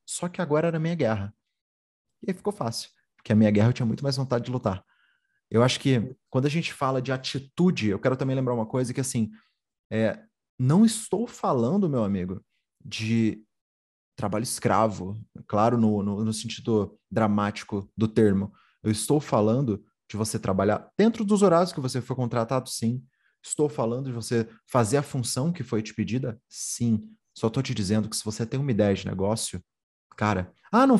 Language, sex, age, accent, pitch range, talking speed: Portuguese, male, 30-49, Brazilian, 110-150 Hz, 190 wpm